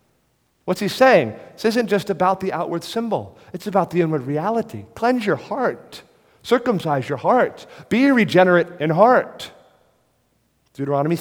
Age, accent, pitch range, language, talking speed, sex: 40-59, American, 125-175 Hz, English, 140 wpm, male